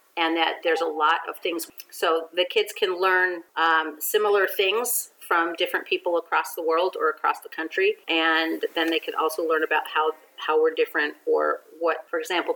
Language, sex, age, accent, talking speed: English, female, 40-59, American, 190 wpm